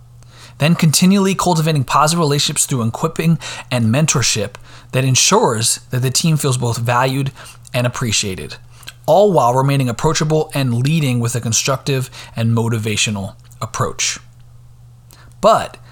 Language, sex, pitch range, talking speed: English, male, 120-145 Hz, 120 wpm